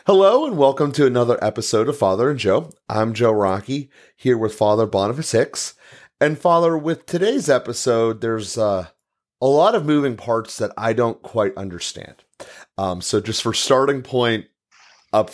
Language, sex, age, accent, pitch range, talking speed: English, male, 30-49, American, 95-120 Hz, 165 wpm